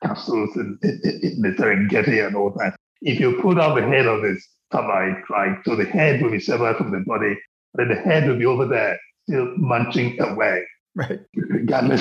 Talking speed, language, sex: 190 wpm, English, male